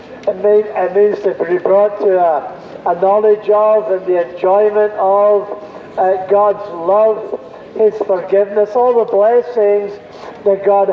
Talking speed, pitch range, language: 130 wpm, 195-225 Hz, English